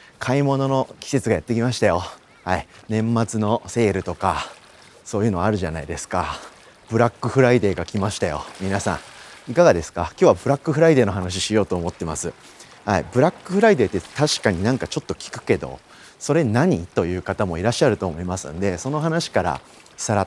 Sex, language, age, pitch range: male, Japanese, 30-49, 95-150 Hz